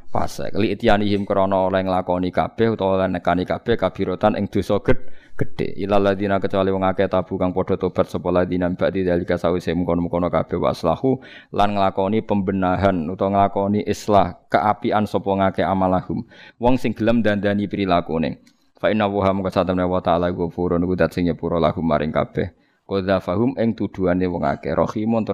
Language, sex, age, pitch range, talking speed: Indonesian, male, 20-39, 90-105 Hz, 55 wpm